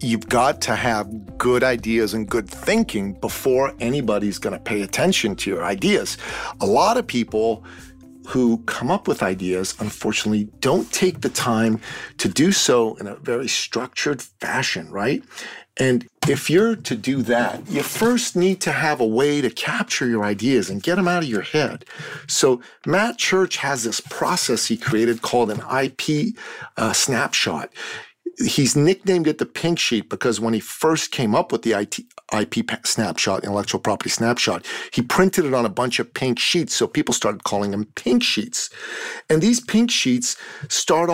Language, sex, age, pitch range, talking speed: English, male, 50-69, 110-160 Hz, 170 wpm